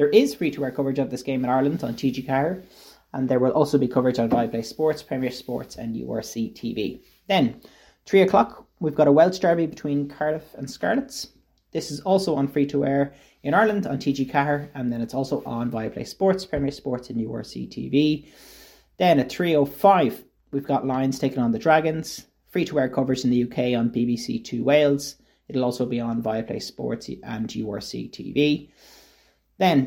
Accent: Irish